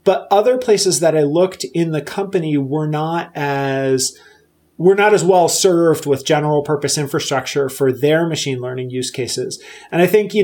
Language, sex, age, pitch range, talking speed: English, male, 30-49, 140-185 Hz, 180 wpm